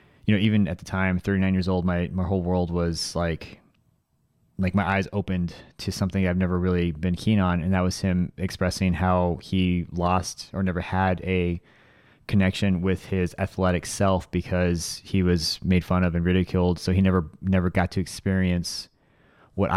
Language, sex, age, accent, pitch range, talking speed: English, male, 20-39, American, 90-95 Hz, 180 wpm